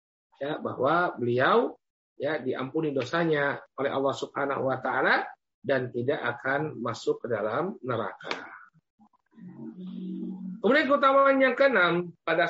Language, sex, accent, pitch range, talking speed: Indonesian, male, native, 140-185 Hz, 110 wpm